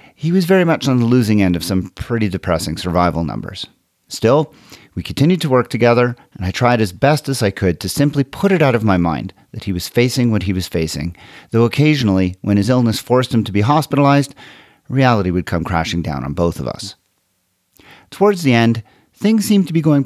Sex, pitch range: male, 95-130 Hz